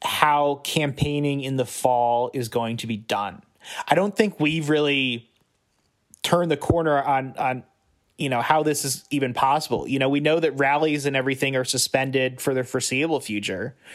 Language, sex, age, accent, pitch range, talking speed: English, male, 30-49, American, 125-150 Hz, 175 wpm